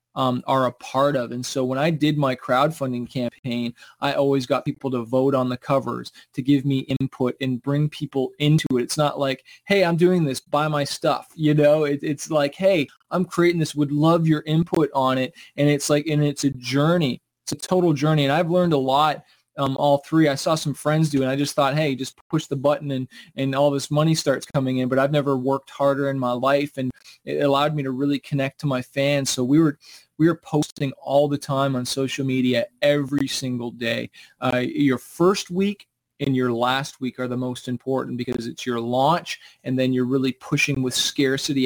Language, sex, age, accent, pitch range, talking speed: English, male, 20-39, American, 130-150 Hz, 220 wpm